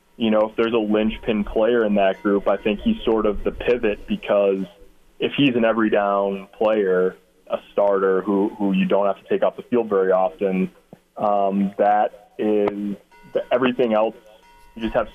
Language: English